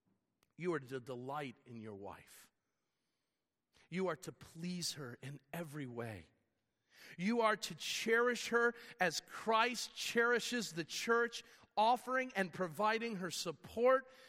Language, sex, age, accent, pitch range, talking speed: English, male, 40-59, American, 150-225 Hz, 125 wpm